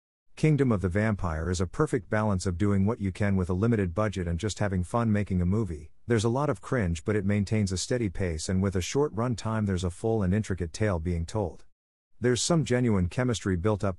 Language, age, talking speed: English, 50-69, 235 wpm